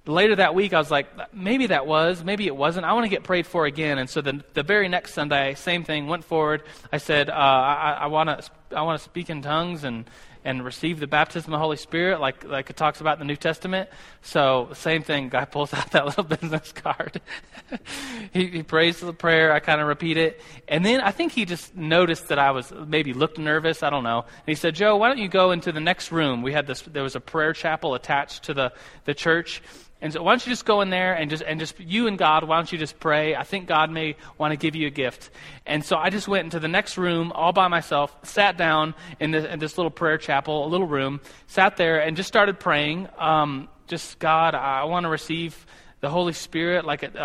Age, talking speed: 20-39, 245 wpm